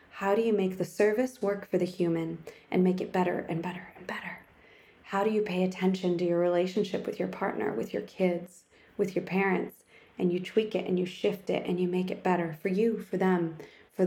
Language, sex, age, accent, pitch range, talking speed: English, female, 20-39, American, 185-240 Hz, 225 wpm